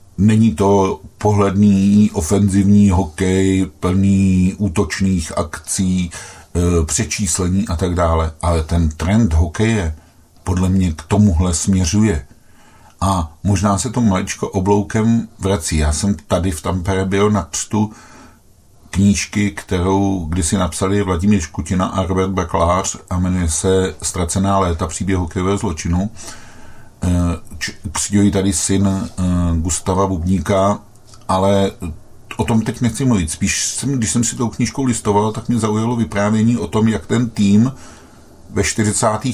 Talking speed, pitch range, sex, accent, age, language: 130 wpm, 90-110 Hz, male, native, 50-69, Czech